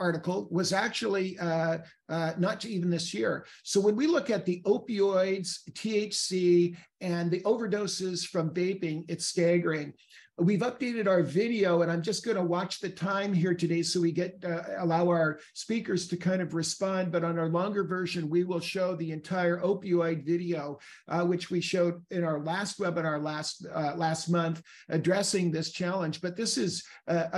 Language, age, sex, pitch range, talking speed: English, 50-69, male, 165-190 Hz, 175 wpm